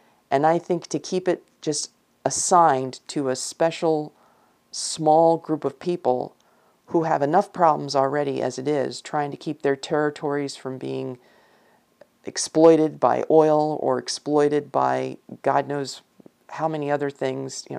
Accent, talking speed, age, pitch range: American, 145 wpm, 40-59, 130-155 Hz